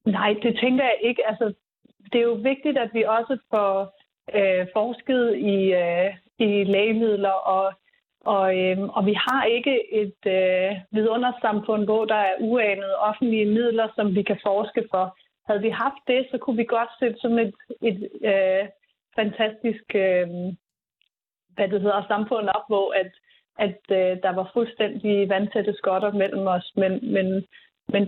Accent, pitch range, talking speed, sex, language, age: native, 195-235 Hz, 140 wpm, female, Danish, 30-49